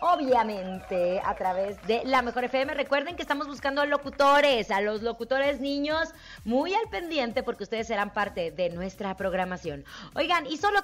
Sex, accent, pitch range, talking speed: female, Mexican, 200-270 Hz, 160 wpm